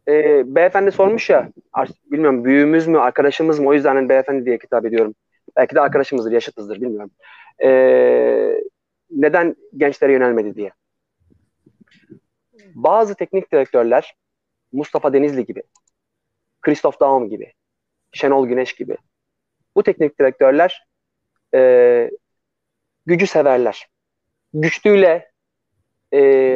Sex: male